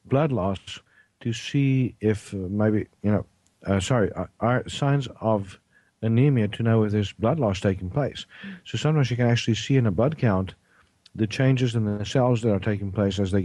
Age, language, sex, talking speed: 50-69, English, male, 195 wpm